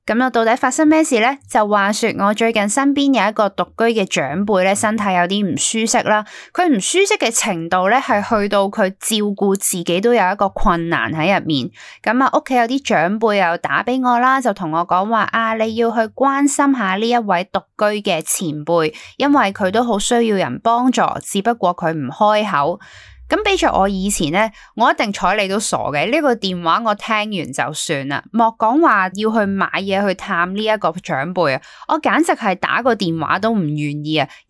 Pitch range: 185-260 Hz